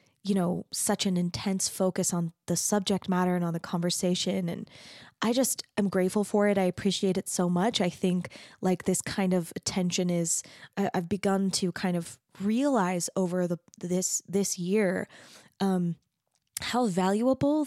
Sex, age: female, 20-39